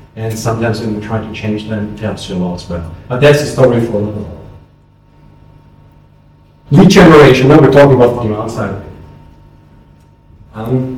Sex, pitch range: male, 105-125 Hz